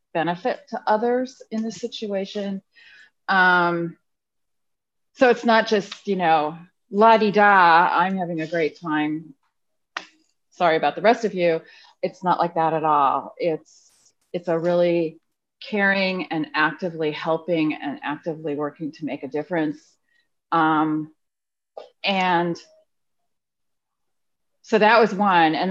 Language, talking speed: English, 125 wpm